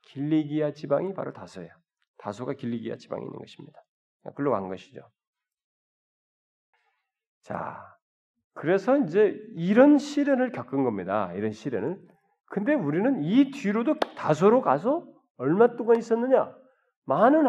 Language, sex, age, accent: Korean, male, 40-59, native